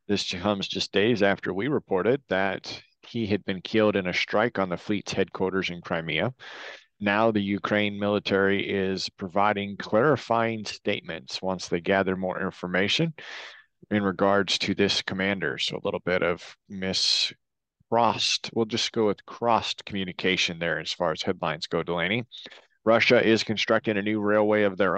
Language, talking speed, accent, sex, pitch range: English, 160 wpm, American, male, 95-110 Hz